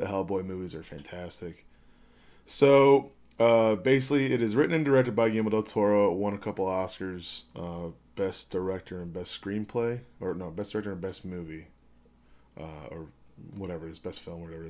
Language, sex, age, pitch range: English, male, 20-39, 85-105 Hz